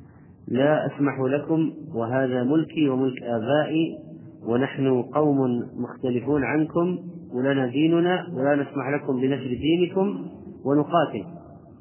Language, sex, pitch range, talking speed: Arabic, male, 130-150 Hz, 95 wpm